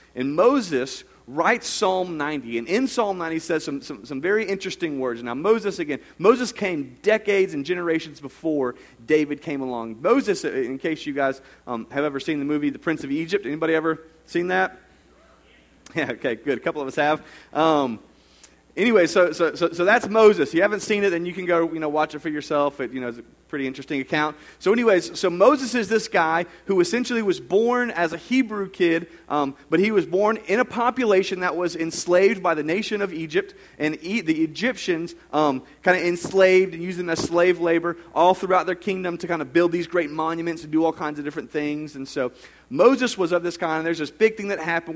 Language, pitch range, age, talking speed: English, 150-195 Hz, 30-49, 210 wpm